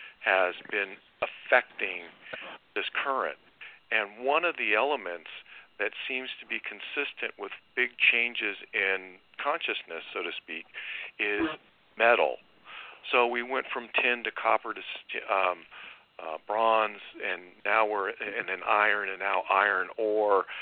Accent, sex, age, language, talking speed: American, male, 50-69, English, 135 wpm